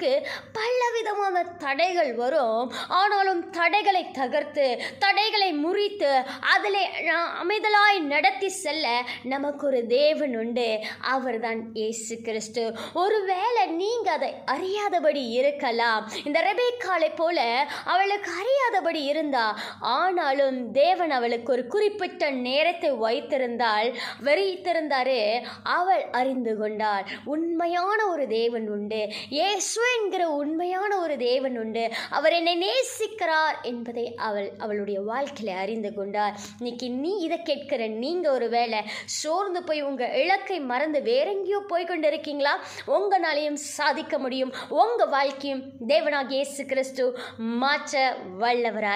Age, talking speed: 20-39, 65 wpm